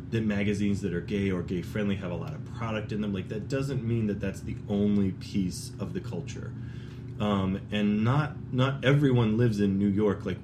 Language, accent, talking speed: English, American, 215 wpm